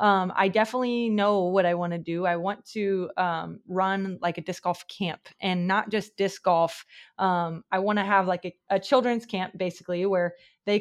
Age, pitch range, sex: 20-39, 175-210 Hz, female